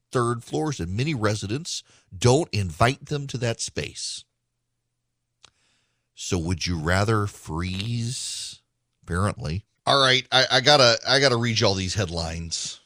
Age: 40-59